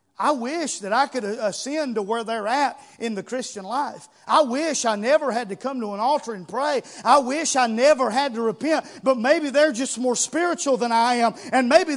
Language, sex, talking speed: English, male, 220 wpm